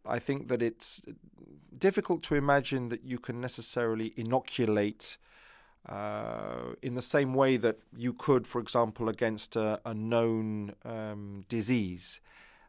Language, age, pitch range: English, 40-59, 110-130 Hz